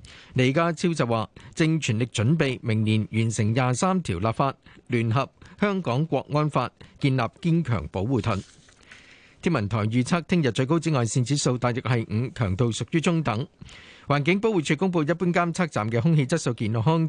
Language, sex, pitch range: Chinese, male, 115-160 Hz